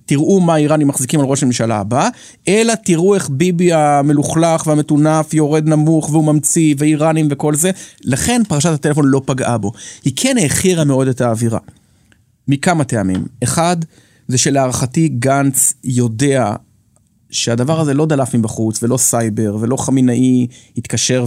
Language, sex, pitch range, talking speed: Hebrew, male, 115-150 Hz, 140 wpm